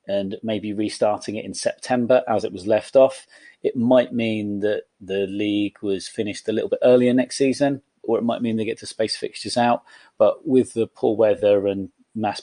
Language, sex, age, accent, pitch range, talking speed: English, male, 30-49, British, 100-130 Hz, 205 wpm